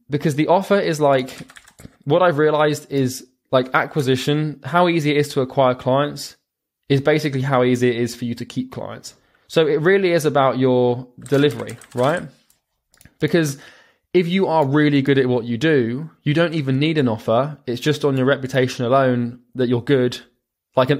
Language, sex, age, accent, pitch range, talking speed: English, male, 20-39, British, 120-145 Hz, 180 wpm